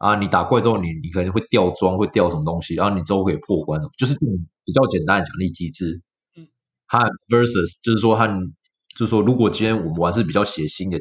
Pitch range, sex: 95-135 Hz, male